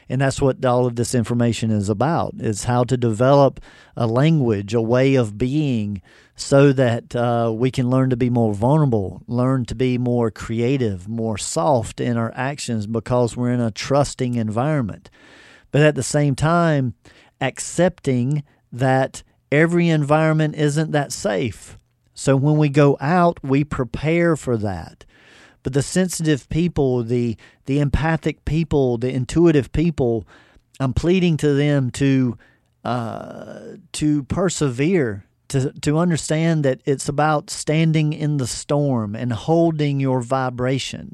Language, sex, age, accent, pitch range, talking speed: English, male, 50-69, American, 120-150 Hz, 145 wpm